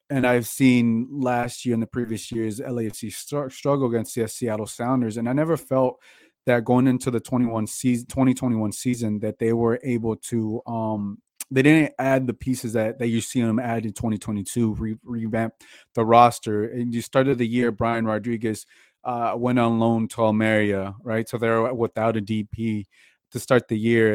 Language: English